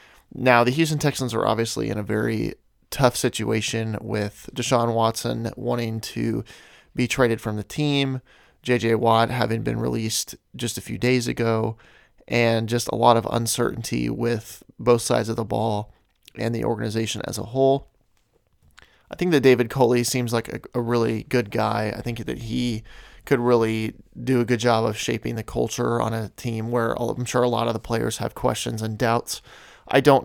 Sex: male